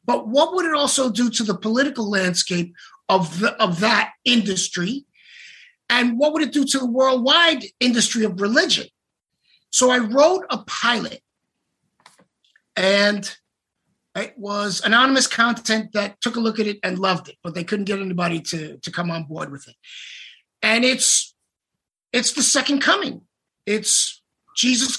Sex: male